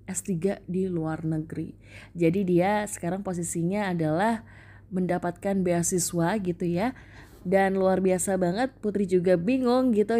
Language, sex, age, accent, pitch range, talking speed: Indonesian, female, 20-39, native, 165-220 Hz, 125 wpm